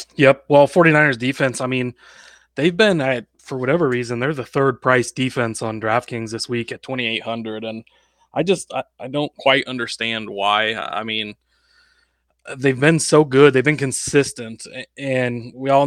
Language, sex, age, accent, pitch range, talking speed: English, male, 20-39, American, 120-135 Hz, 165 wpm